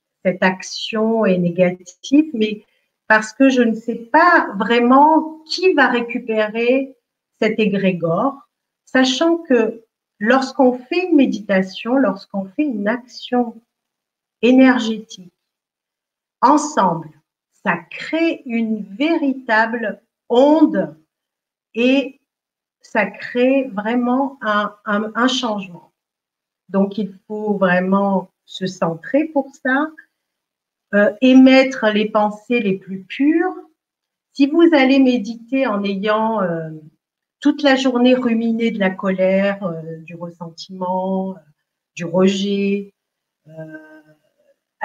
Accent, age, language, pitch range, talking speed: French, 50-69, French, 195-265 Hz, 105 wpm